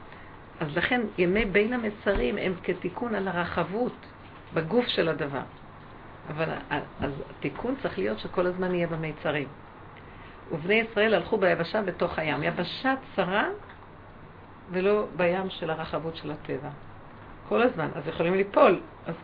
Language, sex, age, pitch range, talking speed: Hebrew, female, 50-69, 170-215 Hz, 125 wpm